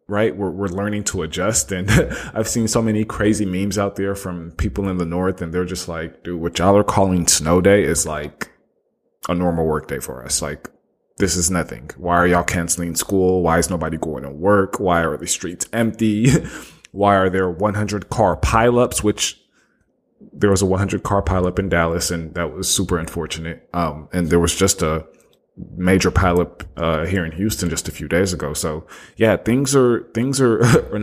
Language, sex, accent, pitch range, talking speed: English, male, American, 85-105 Hz, 200 wpm